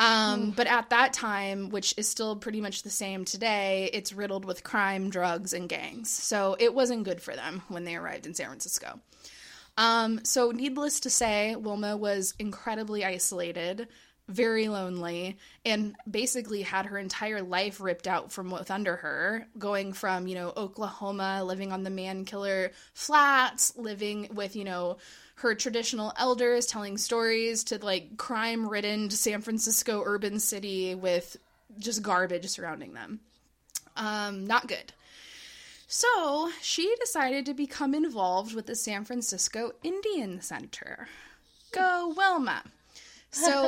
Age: 20-39